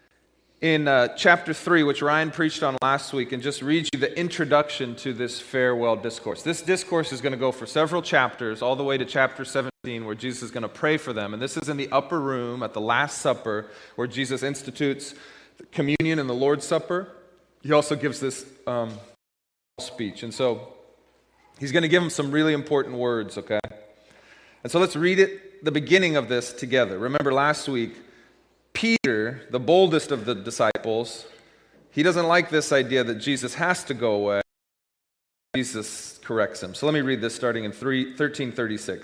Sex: male